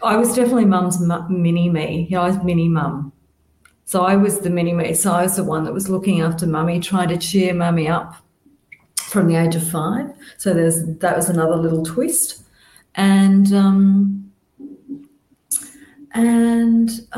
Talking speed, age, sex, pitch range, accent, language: 160 wpm, 40-59, female, 170-210 Hz, Australian, English